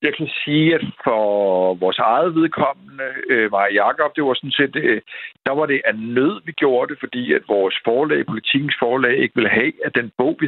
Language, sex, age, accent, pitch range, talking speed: Danish, male, 60-79, native, 120-155 Hz, 190 wpm